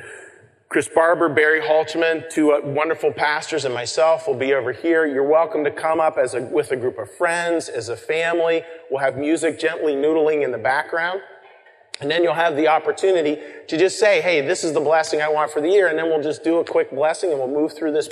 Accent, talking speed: American, 225 wpm